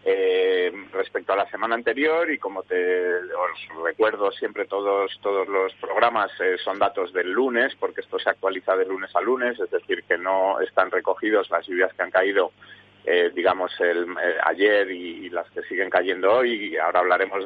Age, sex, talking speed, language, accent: 30-49, male, 190 wpm, Spanish, Spanish